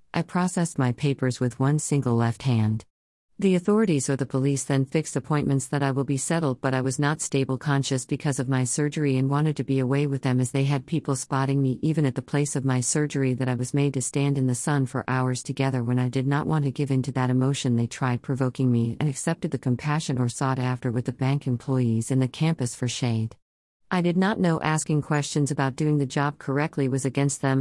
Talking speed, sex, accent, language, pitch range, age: 235 wpm, female, American, English, 130-150 Hz, 50-69